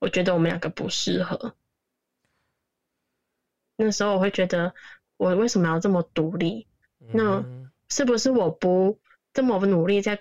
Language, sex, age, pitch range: Chinese, female, 10-29, 180-220 Hz